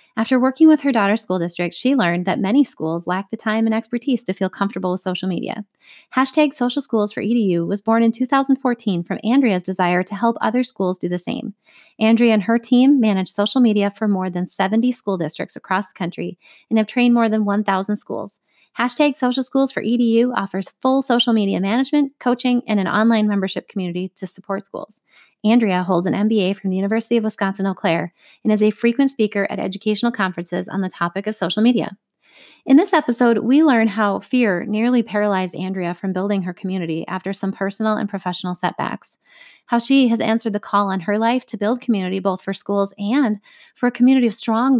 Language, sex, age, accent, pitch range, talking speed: English, female, 30-49, American, 195-240 Hz, 200 wpm